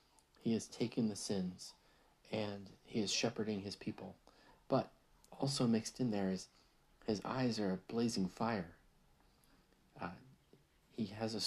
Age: 40-59